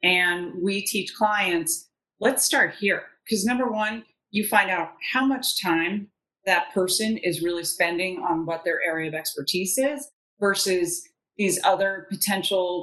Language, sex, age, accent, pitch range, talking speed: English, female, 30-49, American, 180-230 Hz, 150 wpm